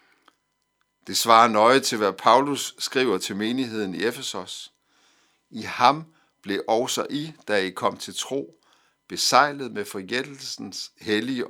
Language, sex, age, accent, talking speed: Danish, male, 60-79, native, 130 wpm